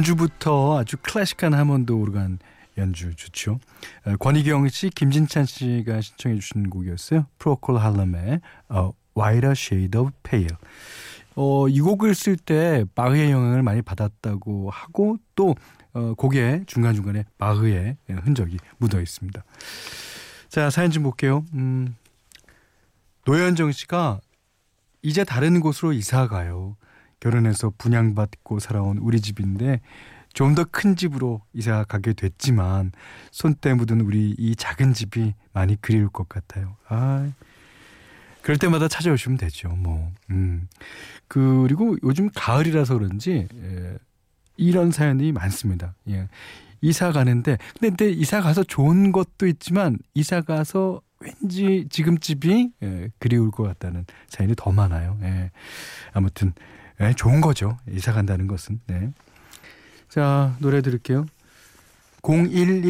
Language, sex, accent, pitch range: Korean, male, native, 100-150 Hz